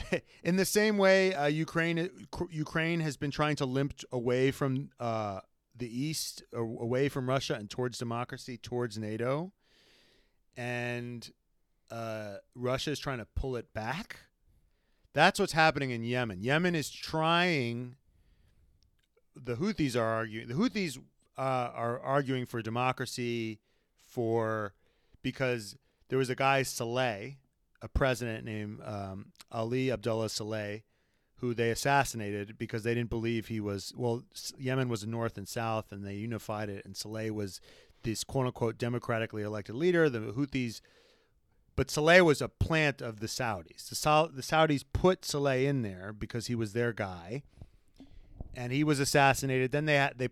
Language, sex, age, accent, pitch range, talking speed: English, male, 30-49, American, 110-140 Hz, 145 wpm